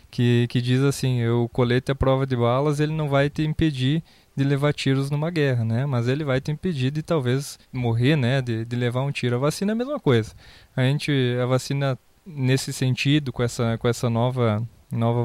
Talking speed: 210 wpm